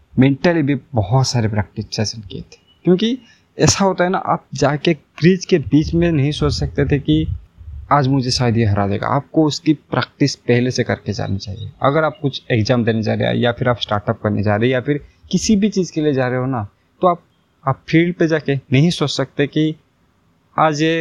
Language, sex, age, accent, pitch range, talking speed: Hindi, male, 20-39, native, 110-155 Hz, 220 wpm